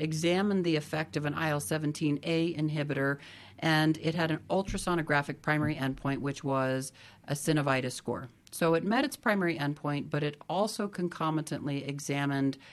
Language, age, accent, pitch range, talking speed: English, 40-59, American, 140-165 Hz, 145 wpm